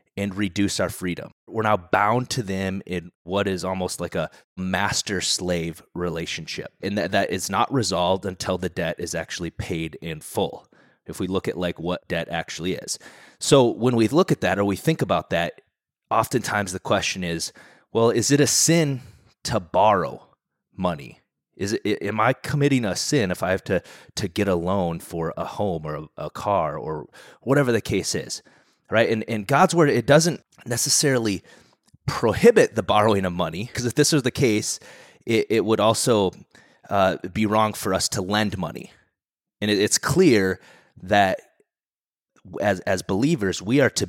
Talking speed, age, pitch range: 180 wpm, 30-49, 90-115 Hz